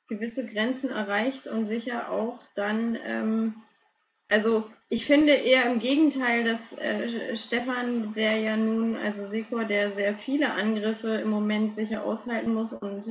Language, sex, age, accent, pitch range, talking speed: German, female, 20-39, German, 205-240 Hz, 145 wpm